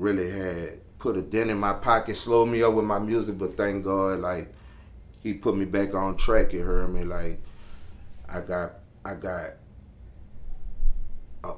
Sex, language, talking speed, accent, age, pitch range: male, English, 170 wpm, American, 30-49, 90-105 Hz